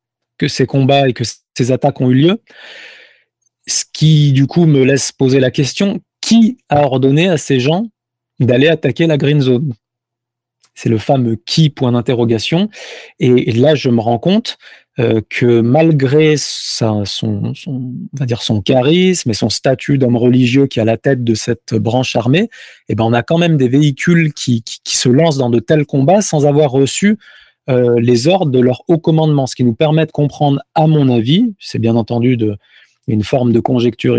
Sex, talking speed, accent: male, 195 wpm, French